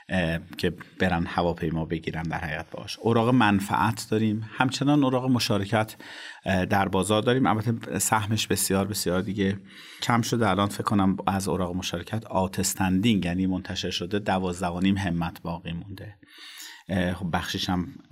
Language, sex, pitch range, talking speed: Persian, male, 90-110 Hz, 135 wpm